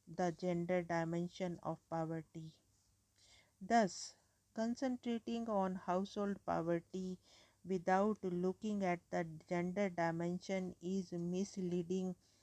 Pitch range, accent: 165-185 Hz, Indian